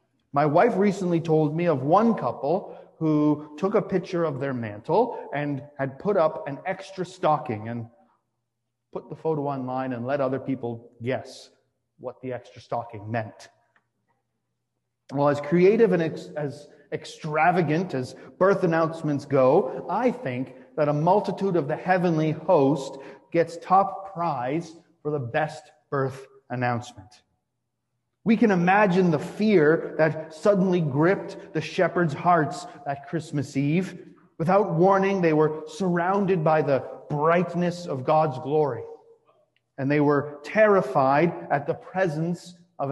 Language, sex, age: English, male, 30-49